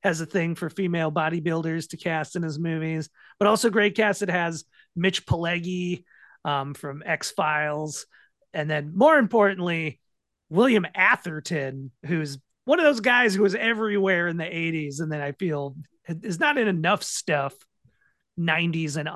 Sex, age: male, 30-49